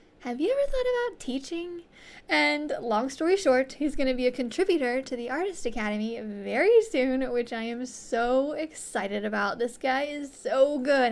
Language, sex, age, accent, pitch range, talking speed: English, female, 10-29, American, 245-320 Hz, 180 wpm